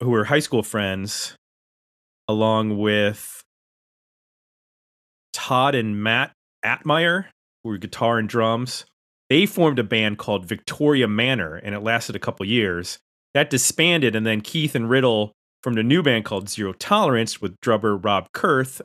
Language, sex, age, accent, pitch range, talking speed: English, male, 30-49, American, 105-135 Hz, 150 wpm